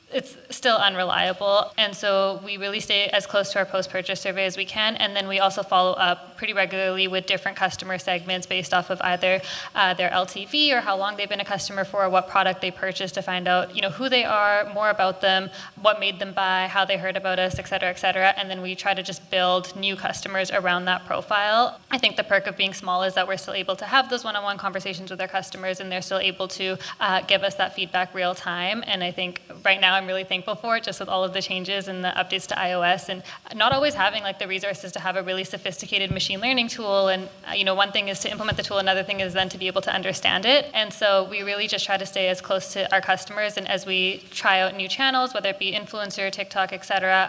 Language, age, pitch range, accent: English, 10-29, 185-200 Hz, American